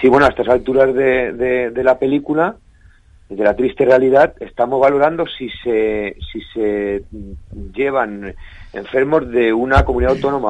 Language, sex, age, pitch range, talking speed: Spanish, male, 50-69, 120-140 Hz, 150 wpm